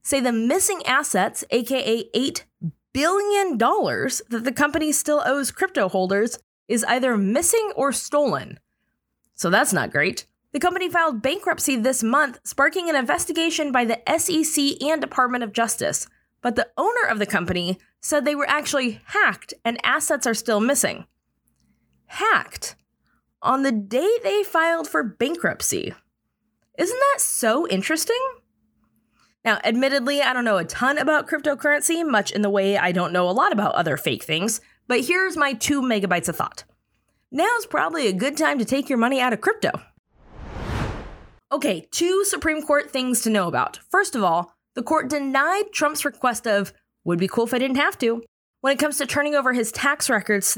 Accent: American